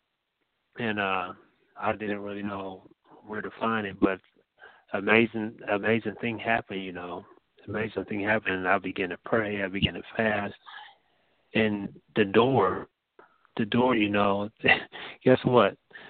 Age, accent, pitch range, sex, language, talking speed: 30-49, American, 100-115 Hz, male, English, 140 wpm